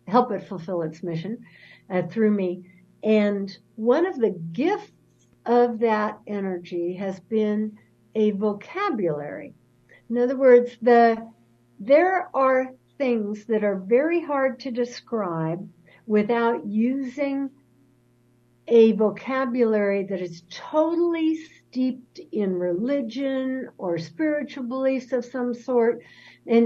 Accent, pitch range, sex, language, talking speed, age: American, 190-255 Hz, female, English, 115 wpm, 60-79